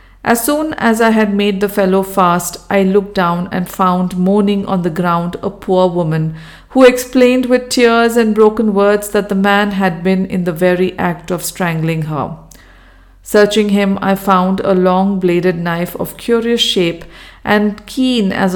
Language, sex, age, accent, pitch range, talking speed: English, female, 50-69, Indian, 175-215 Hz, 170 wpm